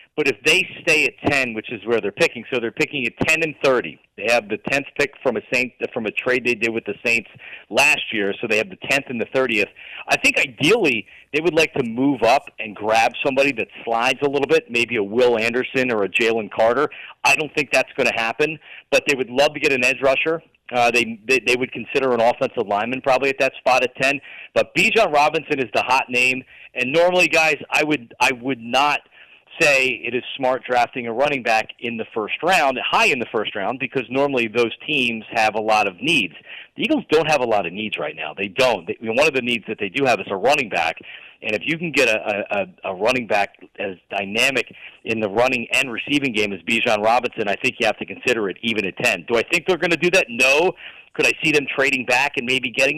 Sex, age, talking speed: male, 40-59, 245 wpm